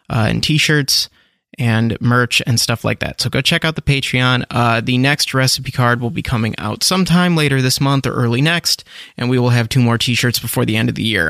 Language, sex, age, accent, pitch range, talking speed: English, male, 30-49, American, 120-160 Hz, 235 wpm